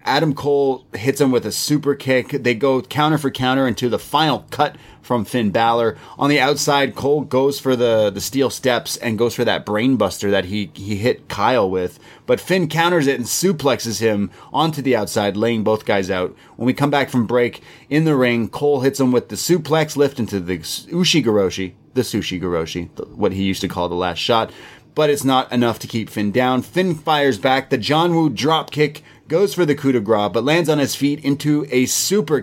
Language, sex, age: English, male, 30-49